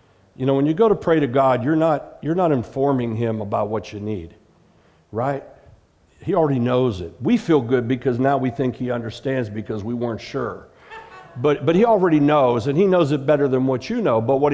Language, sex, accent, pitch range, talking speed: English, male, American, 115-150 Hz, 215 wpm